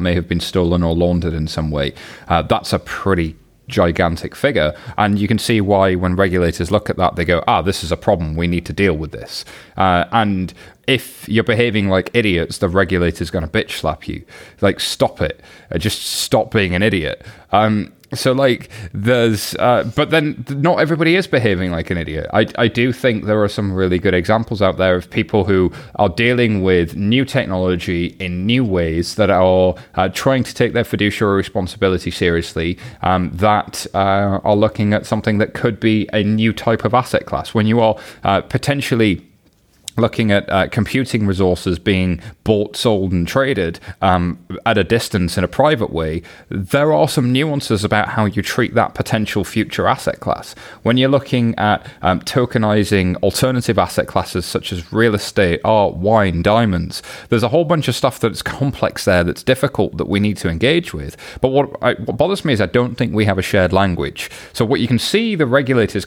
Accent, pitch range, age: British, 90-115 Hz, 30-49